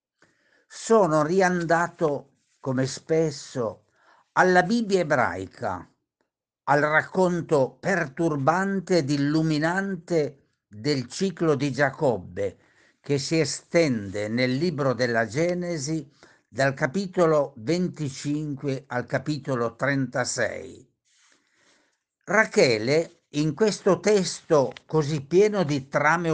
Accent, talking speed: native, 85 wpm